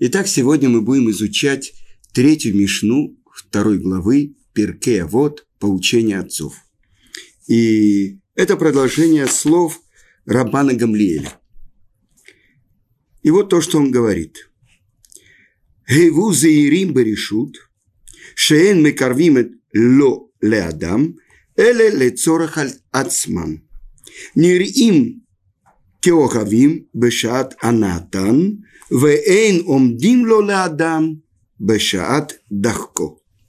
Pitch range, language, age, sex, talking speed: 105-165 Hz, Russian, 50-69, male, 70 wpm